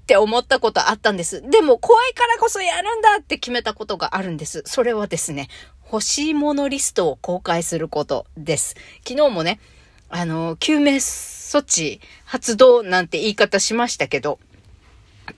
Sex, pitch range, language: female, 200-320 Hz, Japanese